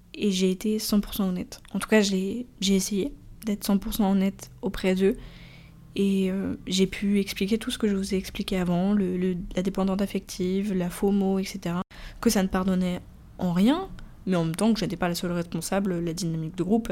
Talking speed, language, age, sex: 200 wpm, French, 20-39, female